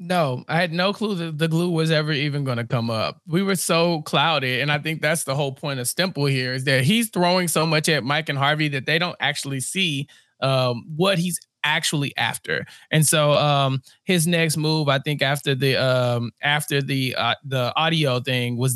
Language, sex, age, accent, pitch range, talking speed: English, male, 20-39, American, 140-200 Hz, 210 wpm